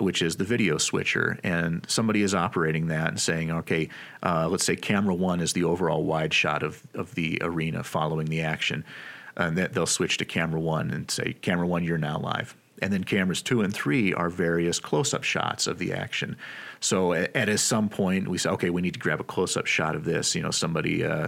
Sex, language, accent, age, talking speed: male, English, American, 40-59, 220 wpm